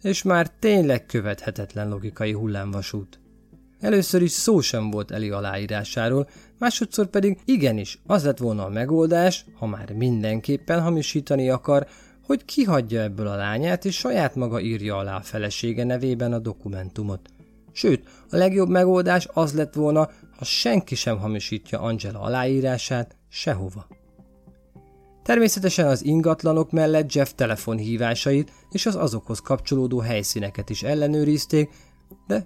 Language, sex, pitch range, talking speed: Hungarian, male, 105-155 Hz, 130 wpm